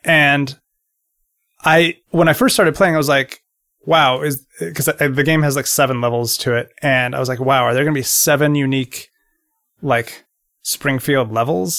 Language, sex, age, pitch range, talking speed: English, male, 30-49, 125-150 Hz, 180 wpm